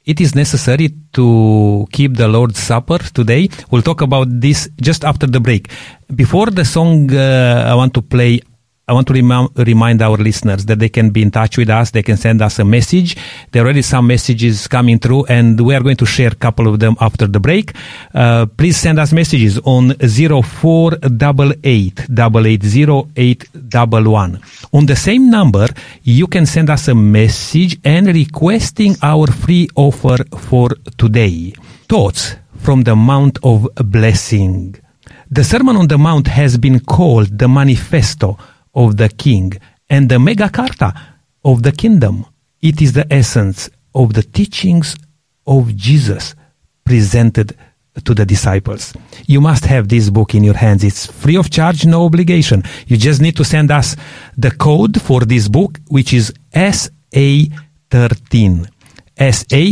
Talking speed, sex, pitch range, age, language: 160 wpm, male, 110-145 Hz, 40-59, English